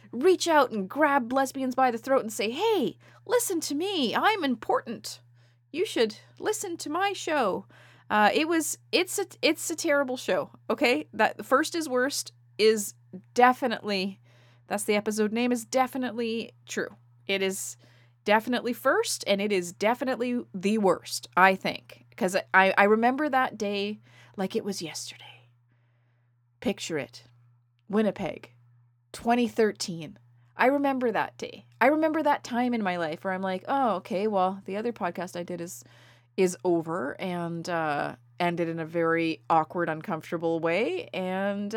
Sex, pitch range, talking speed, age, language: female, 165-270 Hz, 150 wpm, 30-49, English